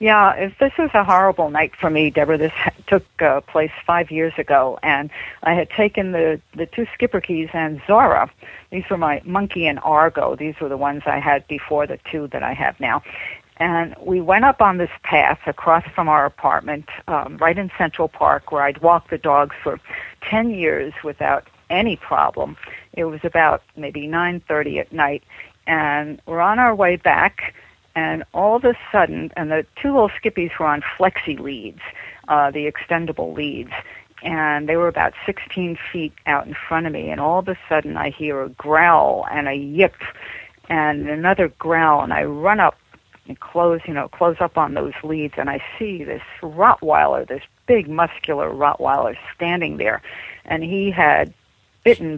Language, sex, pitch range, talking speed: English, female, 150-185 Hz, 185 wpm